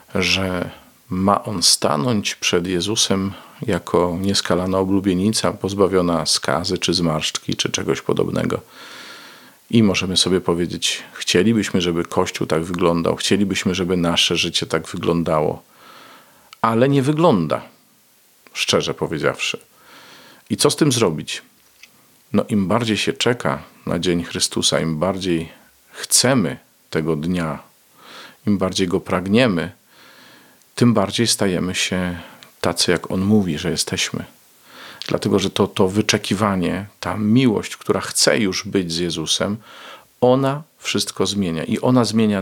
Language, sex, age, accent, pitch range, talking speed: Polish, male, 40-59, native, 85-110 Hz, 125 wpm